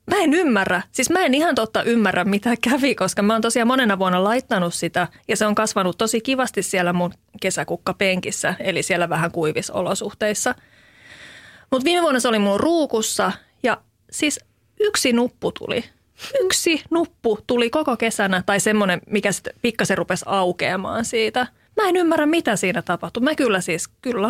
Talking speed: 170 wpm